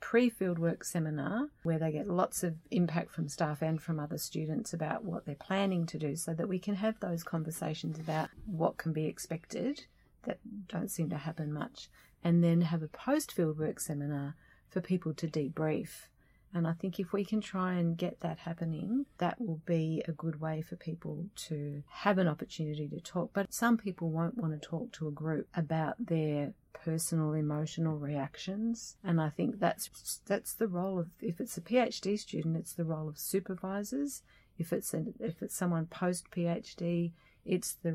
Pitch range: 155-190 Hz